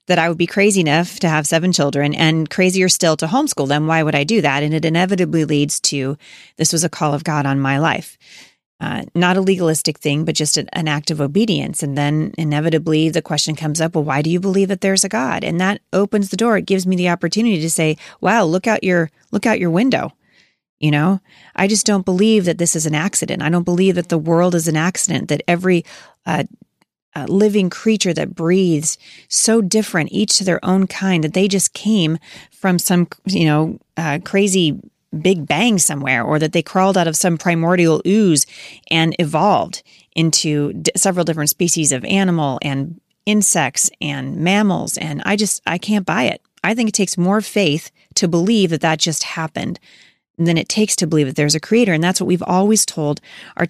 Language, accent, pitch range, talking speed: English, American, 155-195 Hz, 210 wpm